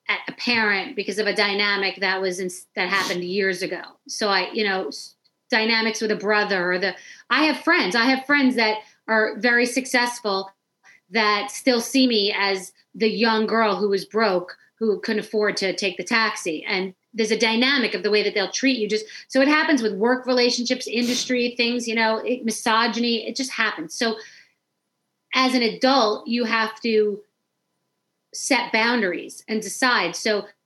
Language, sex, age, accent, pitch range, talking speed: English, female, 40-59, American, 205-235 Hz, 180 wpm